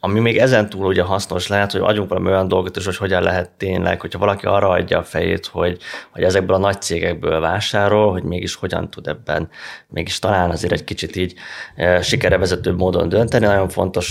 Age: 20-39